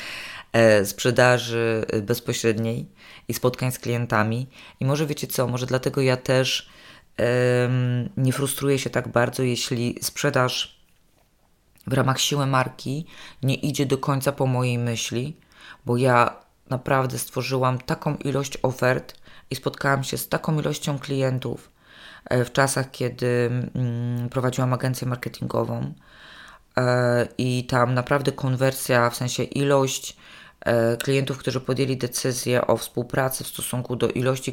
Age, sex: 20-39, female